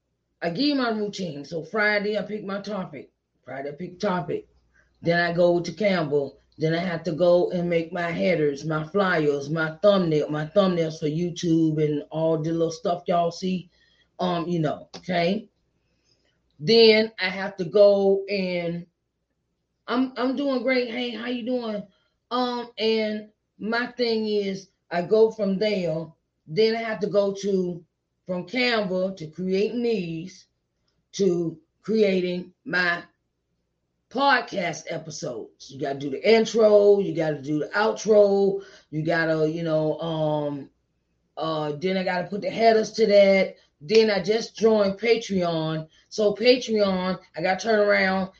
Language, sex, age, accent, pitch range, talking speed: English, female, 30-49, American, 165-210 Hz, 155 wpm